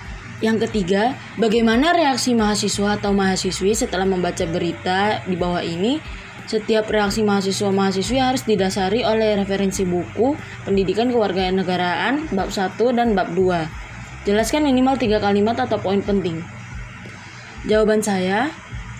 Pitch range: 195-235 Hz